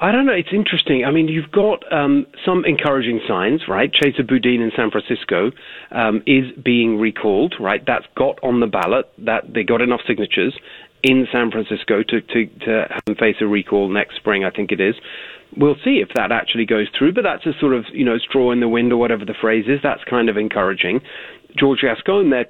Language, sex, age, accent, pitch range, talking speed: English, male, 40-59, British, 115-180 Hz, 215 wpm